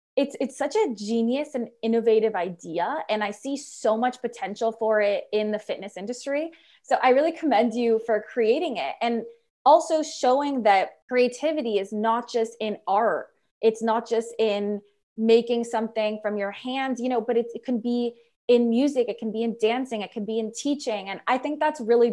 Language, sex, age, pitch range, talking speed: English, female, 20-39, 215-265 Hz, 195 wpm